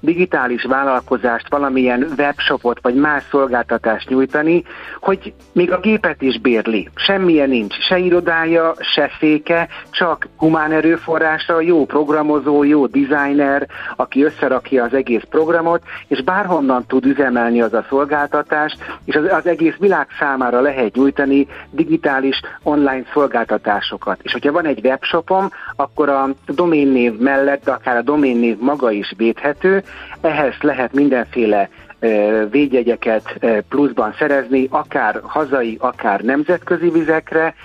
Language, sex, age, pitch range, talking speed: Hungarian, male, 60-79, 125-155 Hz, 120 wpm